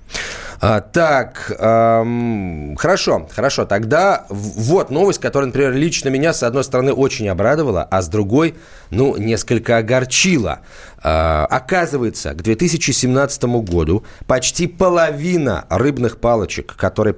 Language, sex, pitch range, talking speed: Russian, male, 105-140 Hz, 110 wpm